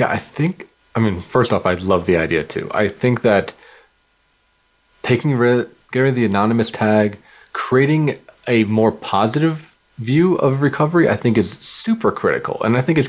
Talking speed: 180 wpm